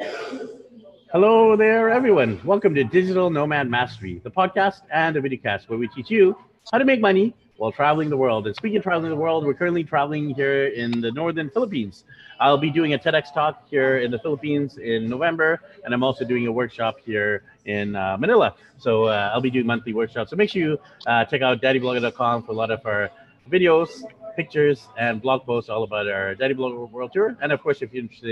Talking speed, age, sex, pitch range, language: 210 wpm, 30-49, male, 120-160 Hz, English